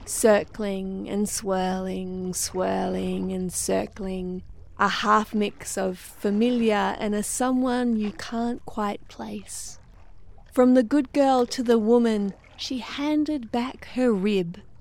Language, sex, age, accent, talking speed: English, female, 30-49, Australian, 120 wpm